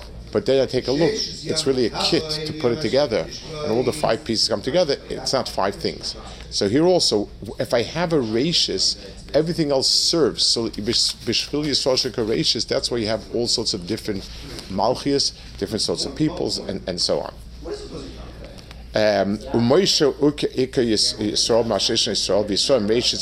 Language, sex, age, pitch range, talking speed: English, male, 50-69, 100-140 Hz, 130 wpm